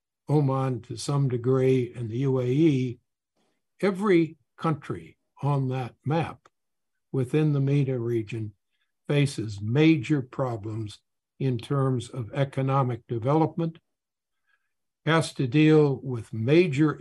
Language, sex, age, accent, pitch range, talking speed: English, male, 60-79, American, 120-150 Hz, 100 wpm